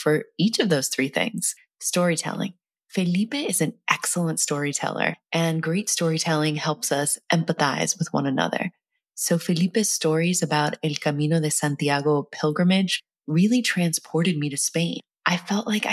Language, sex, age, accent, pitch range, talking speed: English, female, 20-39, American, 155-185 Hz, 145 wpm